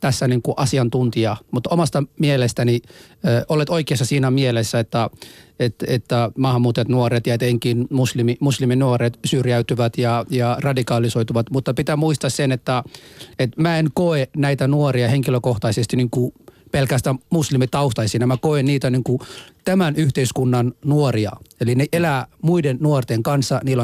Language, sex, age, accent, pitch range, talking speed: Finnish, male, 30-49, native, 120-145 Hz, 145 wpm